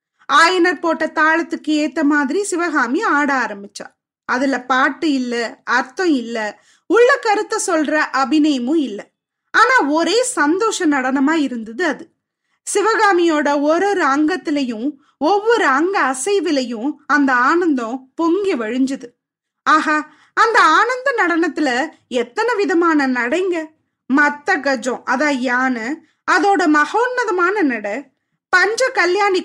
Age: 20-39